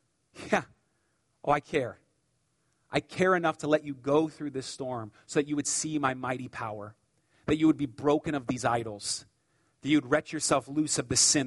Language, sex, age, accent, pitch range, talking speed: English, male, 40-59, American, 125-155 Hz, 200 wpm